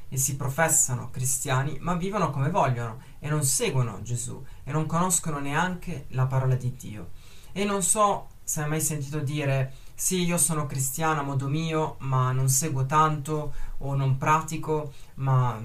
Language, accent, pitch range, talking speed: Italian, native, 130-165 Hz, 165 wpm